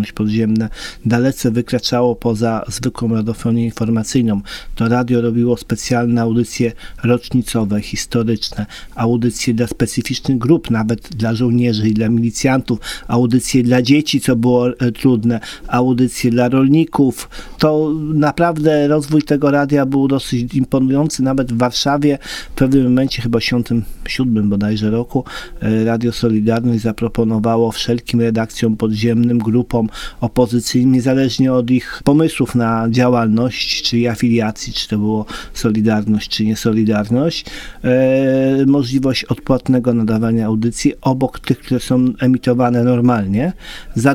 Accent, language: native, Polish